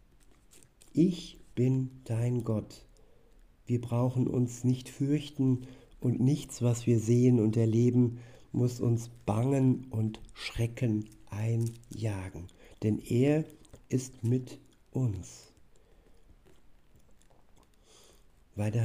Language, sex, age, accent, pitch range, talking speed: German, male, 60-79, German, 115-145 Hz, 90 wpm